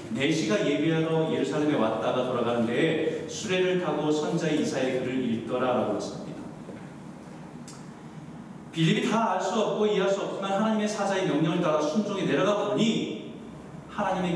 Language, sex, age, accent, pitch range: Korean, male, 40-59, native, 145-185 Hz